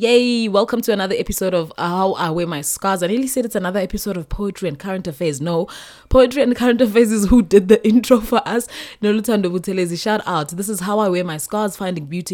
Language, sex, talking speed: English, female, 220 wpm